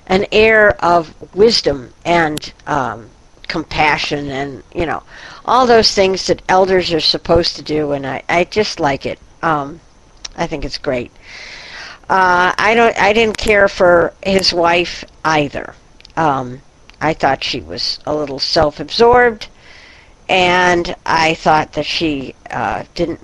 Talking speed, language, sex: 140 wpm, English, female